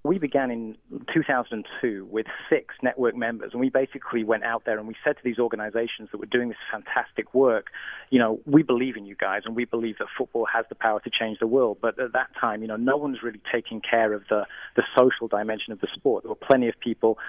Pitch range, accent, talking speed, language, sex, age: 110-125 Hz, British, 240 wpm, English, male, 30-49